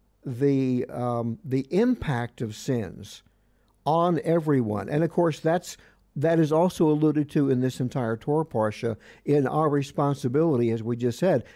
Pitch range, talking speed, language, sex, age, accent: 120-160 Hz, 150 wpm, English, male, 60-79, American